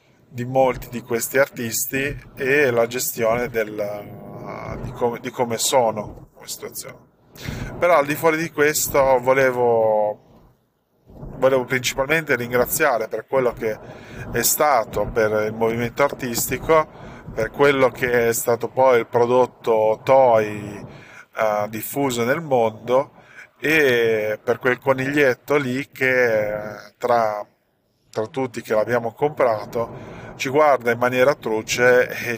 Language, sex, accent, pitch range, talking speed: Italian, male, native, 115-130 Hz, 125 wpm